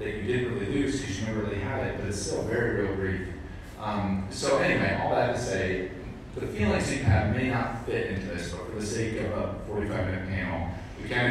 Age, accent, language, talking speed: 30-49, American, English, 230 wpm